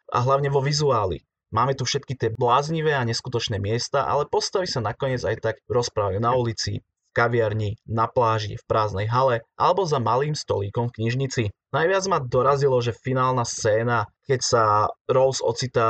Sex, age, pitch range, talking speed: male, 20-39, 110-135 Hz, 165 wpm